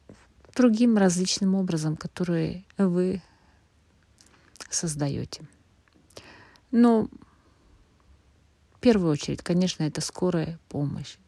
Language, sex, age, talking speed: Russian, female, 40-59, 75 wpm